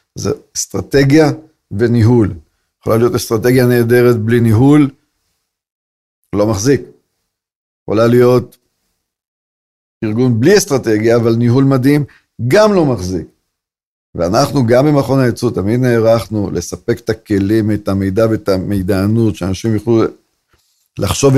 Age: 50-69